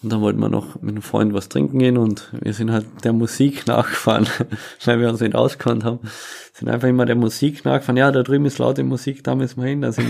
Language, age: German, 20-39